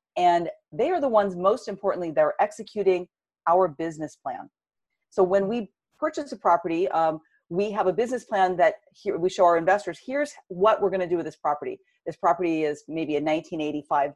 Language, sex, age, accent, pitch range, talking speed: English, female, 40-59, American, 160-215 Hz, 190 wpm